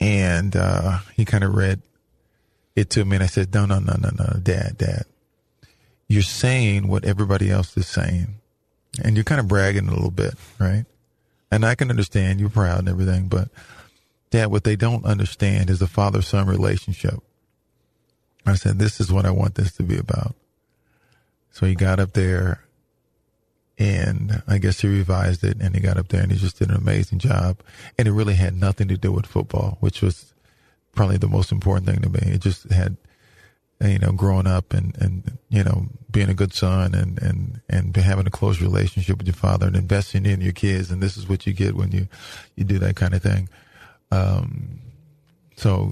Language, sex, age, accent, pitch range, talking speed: English, male, 40-59, American, 95-105 Hz, 195 wpm